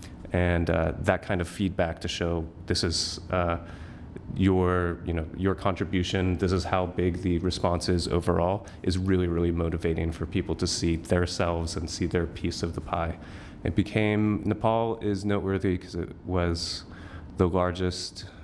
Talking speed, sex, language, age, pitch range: 165 wpm, male, English, 30-49, 85-100 Hz